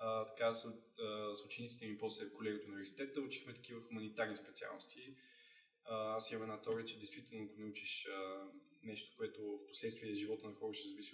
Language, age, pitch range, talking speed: Bulgarian, 20-39, 110-140 Hz, 170 wpm